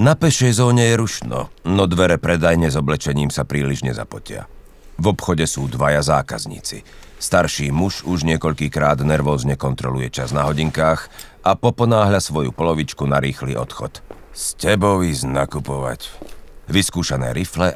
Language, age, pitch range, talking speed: Slovak, 40-59, 70-90 Hz, 135 wpm